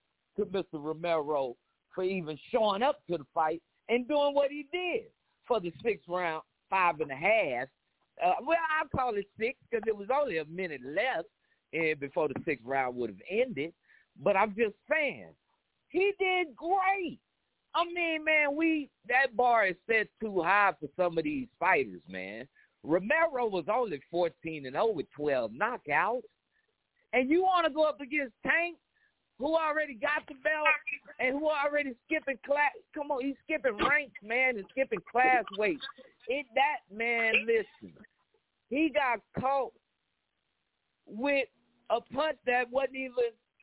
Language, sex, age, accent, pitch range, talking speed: English, male, 50-69, American, 210-310 Hz, 160 wpm